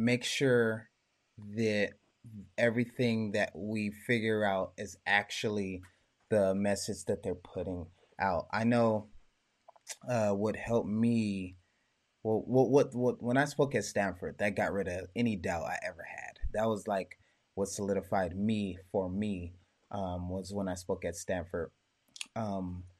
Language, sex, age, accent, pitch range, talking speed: English, male, 20-39, American, 95-115 Hz, 145 wpm